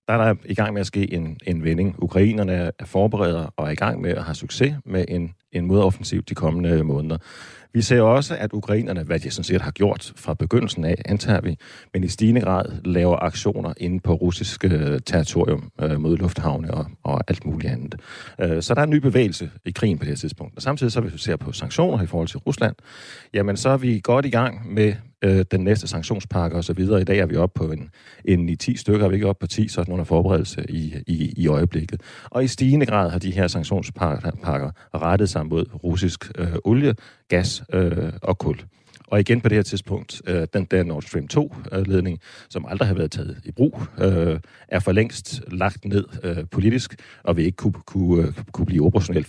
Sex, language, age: male, Danish, 40-59